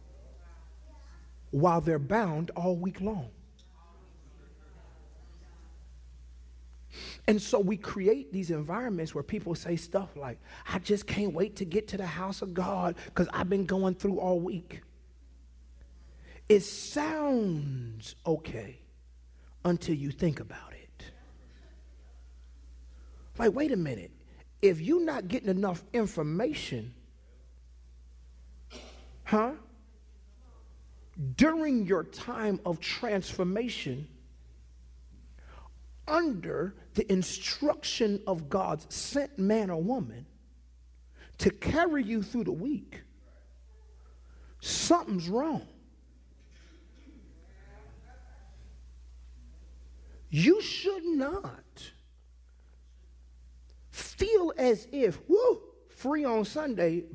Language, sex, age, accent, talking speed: English, male, 40-59, American, 90 wpm